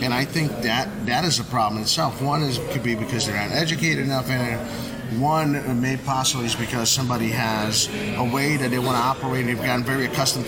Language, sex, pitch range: English, male, 120-145 Hz